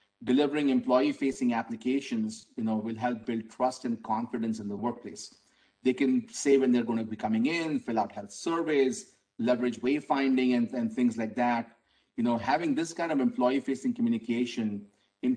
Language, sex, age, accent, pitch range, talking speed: English, male, 40-59, Indian, 110-130 Hz, 170 wpm